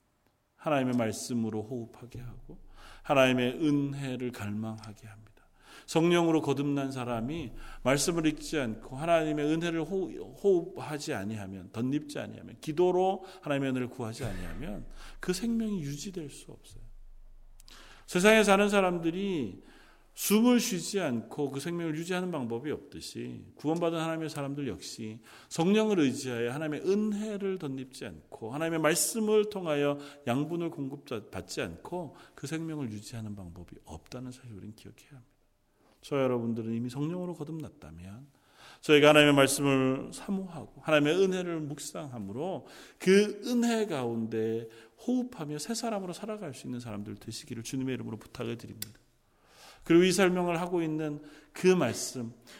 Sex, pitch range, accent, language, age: male, 115-170 Hz, native, Korean, 40-59